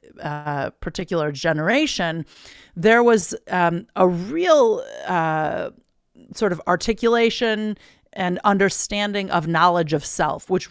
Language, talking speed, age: English, 105 wpm, 40-59